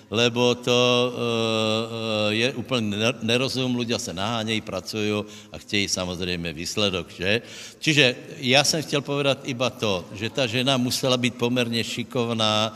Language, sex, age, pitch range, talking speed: Slovak, male, 60-79, 110-130 Hz, 140 wpm